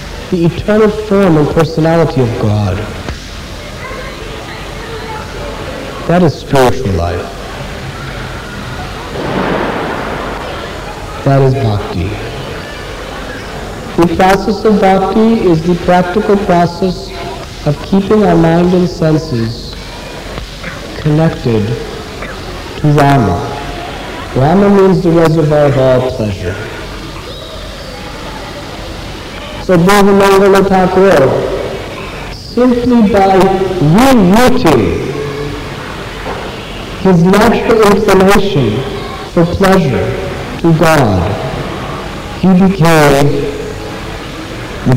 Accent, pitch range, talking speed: American, 125-190 Hz, 70 wpm